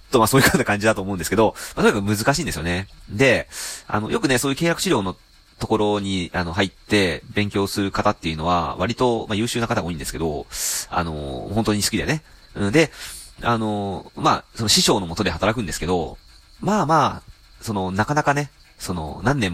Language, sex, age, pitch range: Japanese, male, 30-49, 90-115 Hz